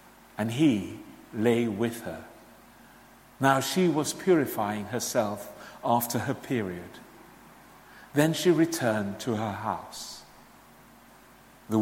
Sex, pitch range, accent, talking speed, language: male, 120-160 Hz, British, 100 wpm, English